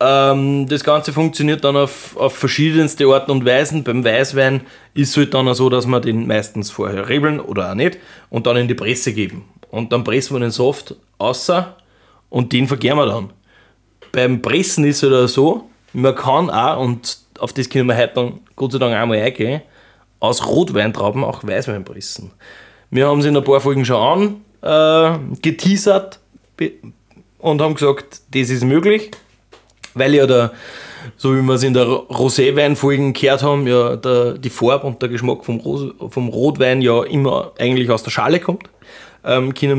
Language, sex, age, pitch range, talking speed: German, male, 20-39, 120-145 Hz, 180 wpm